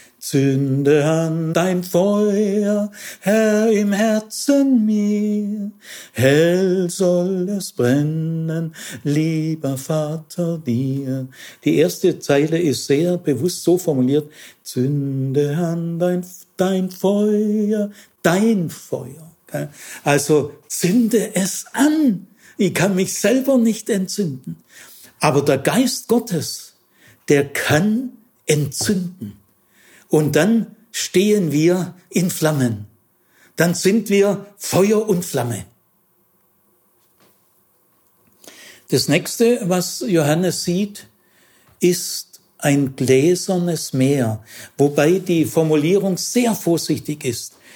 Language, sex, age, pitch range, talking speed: German, male, 60-79, 150-205 Hz, 95 wpm